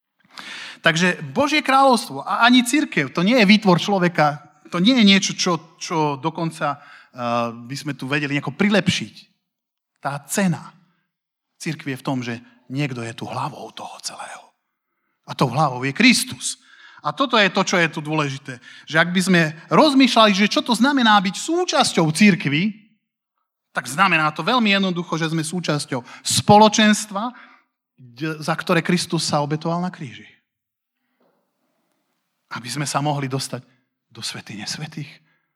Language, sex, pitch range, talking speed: Slovak, male, 145-210 Hz, 145 wpm